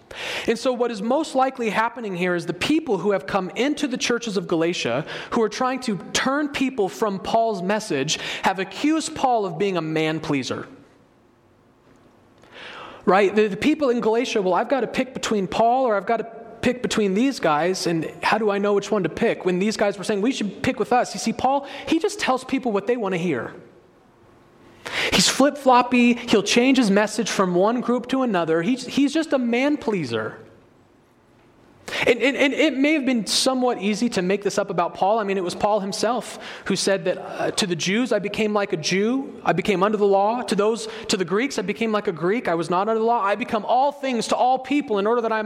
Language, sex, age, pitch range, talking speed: English, male, 30-49, 190-245 Hz, 220 wpm